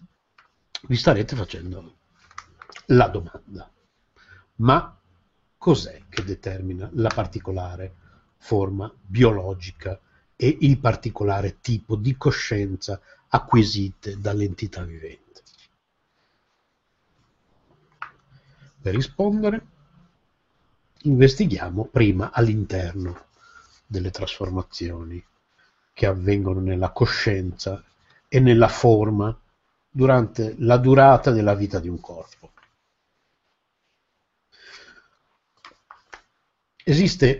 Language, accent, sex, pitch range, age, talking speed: Italian, native, male, 95-135 Hz, 60-79, 70 wpm